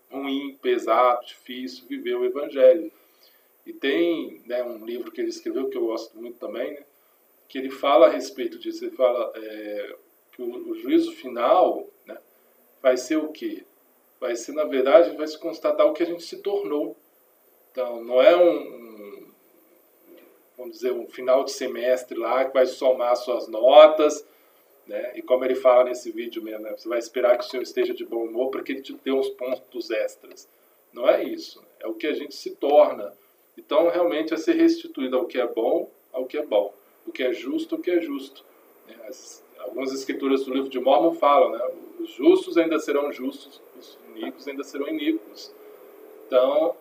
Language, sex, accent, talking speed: Portuguese, male, Brazilian, 180 wpm